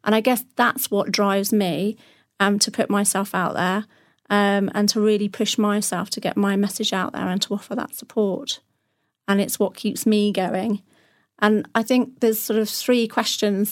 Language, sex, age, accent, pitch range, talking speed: English, female, 40-59, British, 195-220 Hz, 195 wpm